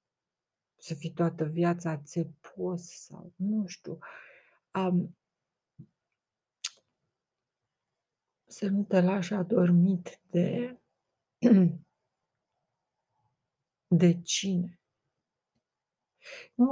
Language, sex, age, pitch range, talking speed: Romanian, female, 50-69, 170-200 Hz, 65 wpm